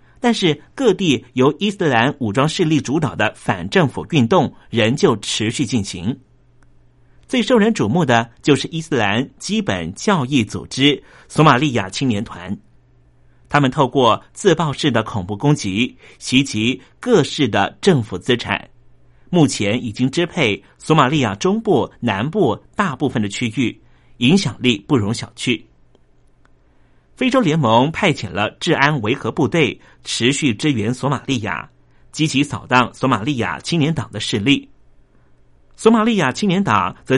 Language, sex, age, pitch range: Chinese, male, 50-69, 110-155 Hz